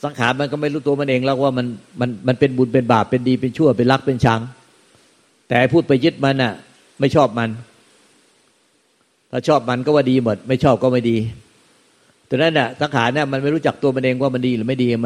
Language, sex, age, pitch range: Thai, male, 60-79, 125-155 Hz